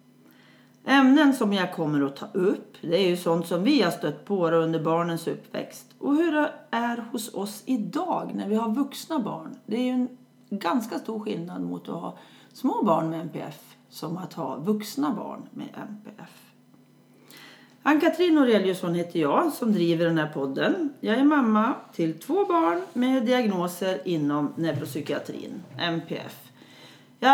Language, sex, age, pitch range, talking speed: Swedish, female, 40-59, 175-270 Hz, 160 wpm